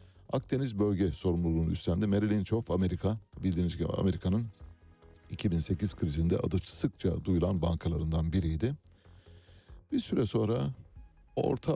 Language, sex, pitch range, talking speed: Turkish, male, 85-110 Hz, 110 wpm